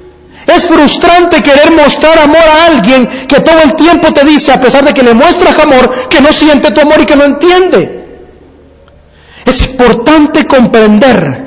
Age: 40-59